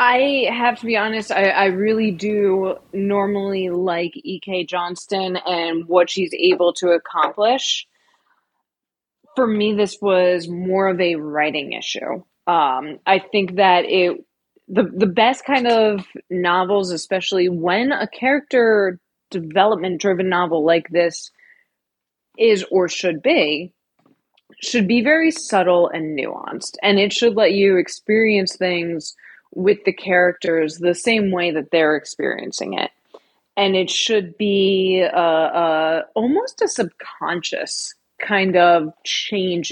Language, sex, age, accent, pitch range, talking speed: English, female, 20-39, American, 170-215 Hz, 130 wpm